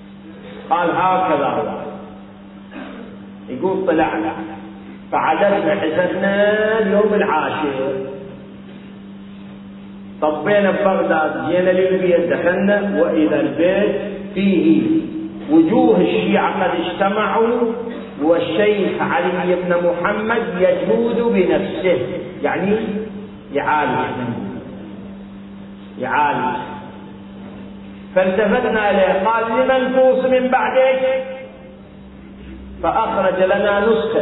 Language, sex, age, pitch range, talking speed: Arabic, male, 50-69, 155-200 Hz, 70 wpm